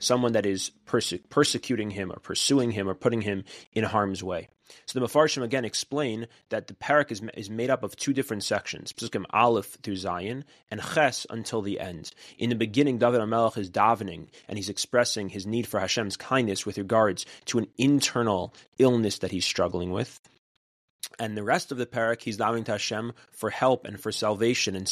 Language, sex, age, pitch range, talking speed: English, male, 30-49, 100-125 Hz, 195 wpm